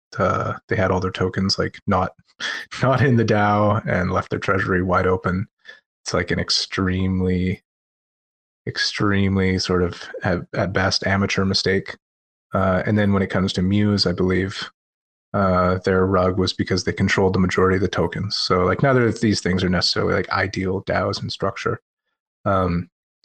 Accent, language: American, English